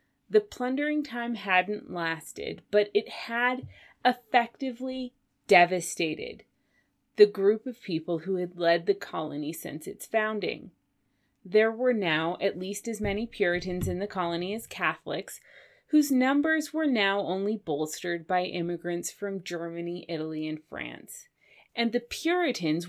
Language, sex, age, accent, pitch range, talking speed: English, female, 30-49, American, 170-240 Hz, 135 wpm